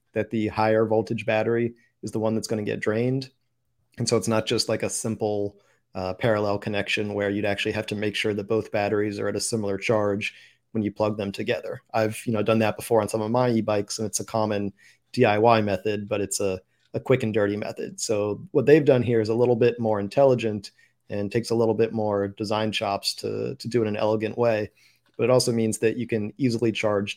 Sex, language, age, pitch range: male, English, 30-49, 105-115 Hz